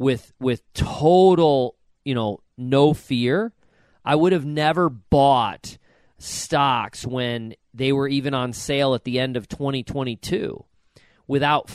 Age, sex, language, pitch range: 40-59, male, English, 125-160 Hz